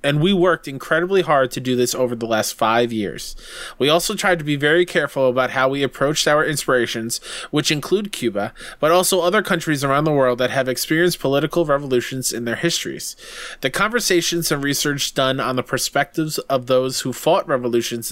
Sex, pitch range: male, 130-165 Hz